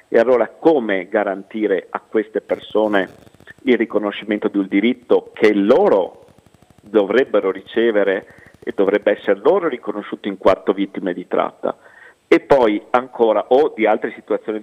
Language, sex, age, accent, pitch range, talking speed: Italian, male, 50-69, native, 100-140 Hz, 135 wpm